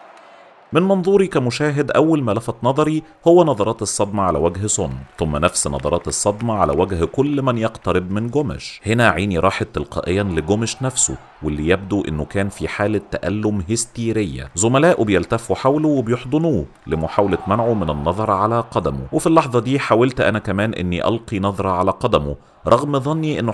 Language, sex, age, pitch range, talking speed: Arabic, male, 40-59, 90-120 Hz, 160 wpm